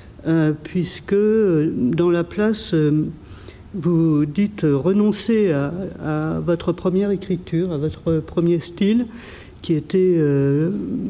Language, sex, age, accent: French, male, 50-69, French